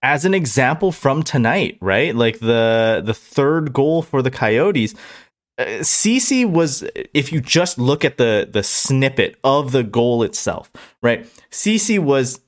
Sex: male